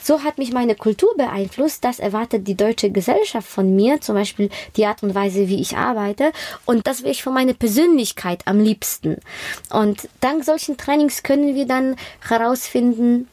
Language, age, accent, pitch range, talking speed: German, 20-39, German, 195-245 Hz, 175 wpm